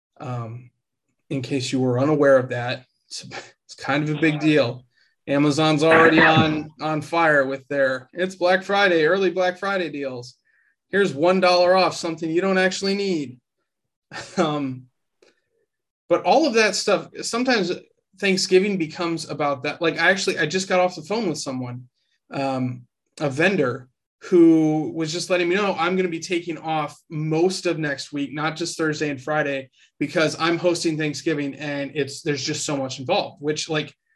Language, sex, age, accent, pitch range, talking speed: English, male, 20-39, American, 140-180 Hz, 170 wpm